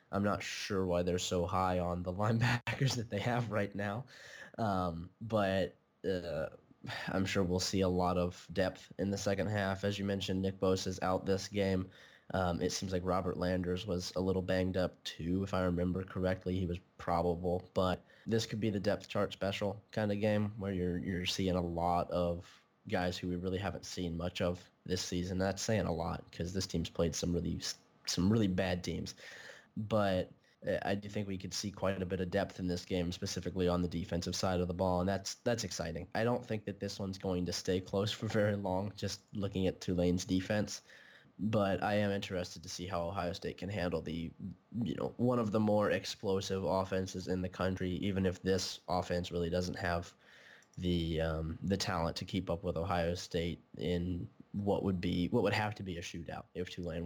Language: English